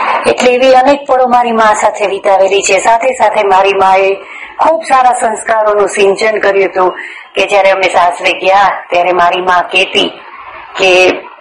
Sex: female